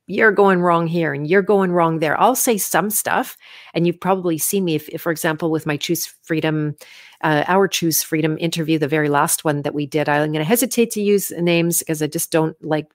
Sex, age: female, 40-59